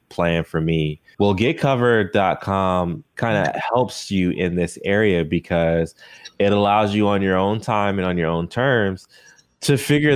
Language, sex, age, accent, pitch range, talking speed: English, male, 20-39, American, 85-110 Hz, 160 wpm